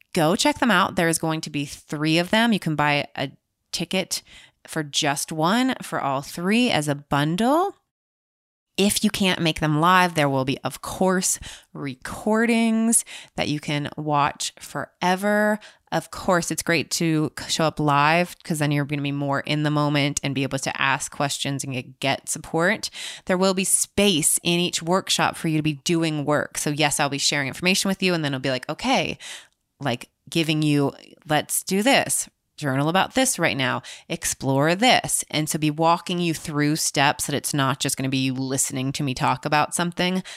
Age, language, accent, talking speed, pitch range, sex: 20-39, English, American, 195 wpm, 145-185 Hz, female